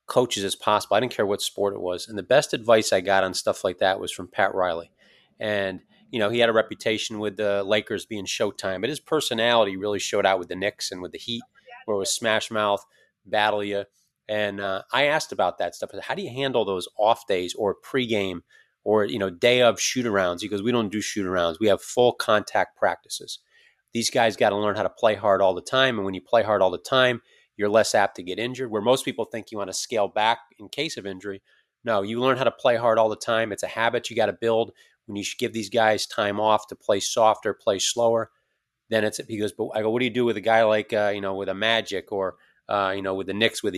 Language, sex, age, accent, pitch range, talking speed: English, male, 30-49, American, 100-115 Hz, 260 wpm